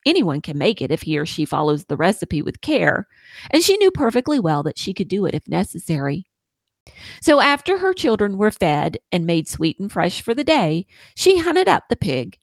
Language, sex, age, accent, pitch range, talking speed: English, female, 40-59, American, 160-250 Hz, 210 wpm